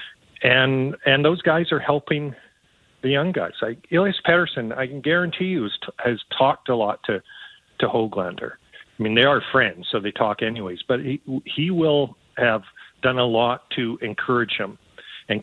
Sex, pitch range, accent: male, 110-135 Hz, American